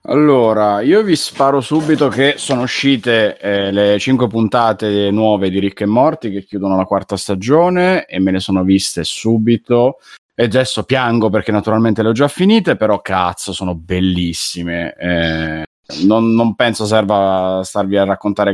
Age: 20-39